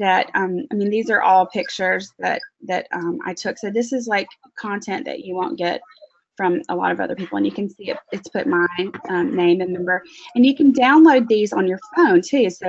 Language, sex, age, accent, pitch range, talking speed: English, female, 20-39, American, 185-245 Hz, 235 wpm